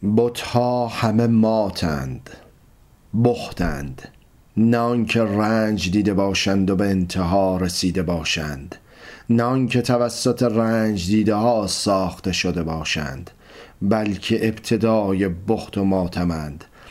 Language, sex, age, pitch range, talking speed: Persian, male, 40-59, 95-120 Hz, 100 wpm